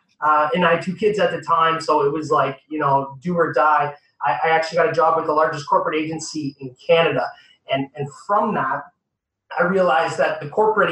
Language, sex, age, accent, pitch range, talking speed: English, male, 30-49, American, 150-205 Hz, 220 wpm